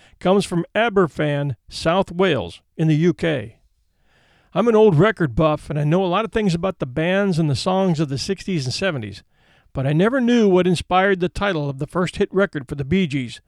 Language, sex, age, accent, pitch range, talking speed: English, male, 50-69, American, 140-195 Hz, 215 wpm